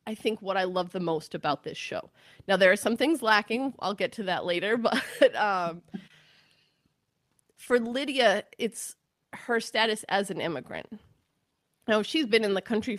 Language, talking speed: English, 170 wpm